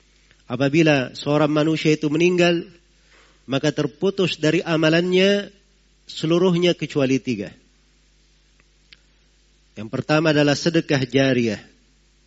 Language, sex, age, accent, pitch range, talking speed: Indonesian, male, 40-59, native, 135-165 Hz, 85 wpm